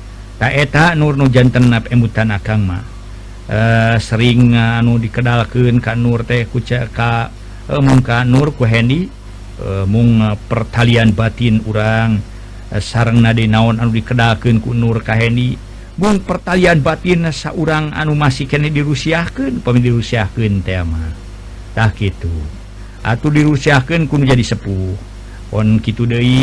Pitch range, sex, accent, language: 105-135 Hz, male, native, Indonesian